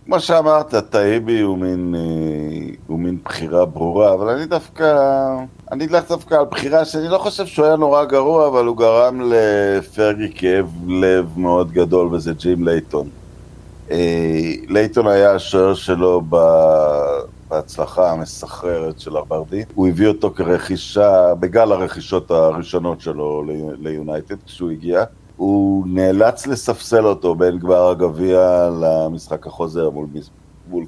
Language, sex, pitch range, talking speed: Hebrew, male, 85-105 Hz, 125 wpm